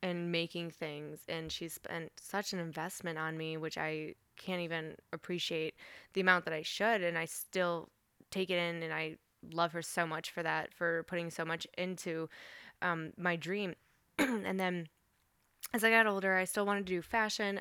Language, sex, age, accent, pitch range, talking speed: English, female, 10-29, American, 165-190 Hz, 185 wpm